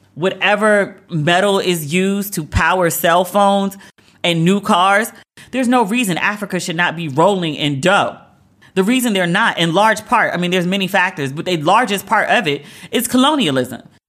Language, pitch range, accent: English, 180-240 Hz, American